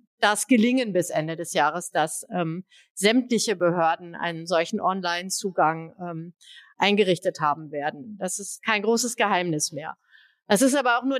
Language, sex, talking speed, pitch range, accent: German, female, 145 wpm, 190-245 Hz, German